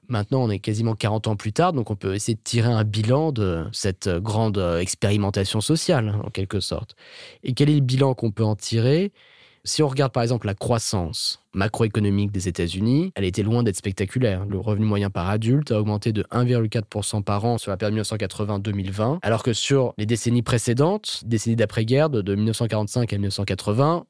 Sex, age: male, 20-39